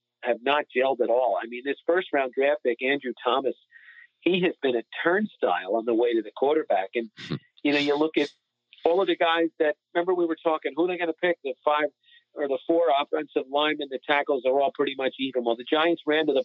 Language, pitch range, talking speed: English, 130-175 Hz, 240 wpm